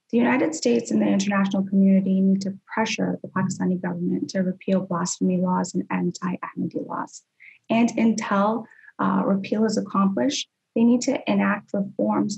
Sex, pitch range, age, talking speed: female, 185-220 Hz, 20-39, 150 wpm